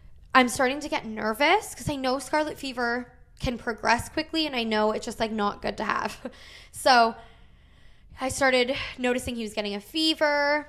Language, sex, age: English, female, 10-29